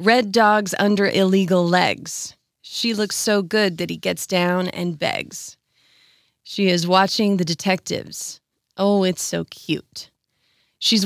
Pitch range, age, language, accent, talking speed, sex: 175-225 Hz, 30-49, English, American, 135 wpm, female